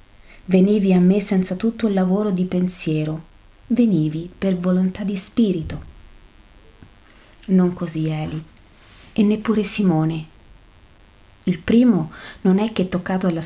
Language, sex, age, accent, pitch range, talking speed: Italian, female, 30-49, native, 160-195 Hz, 120 wpm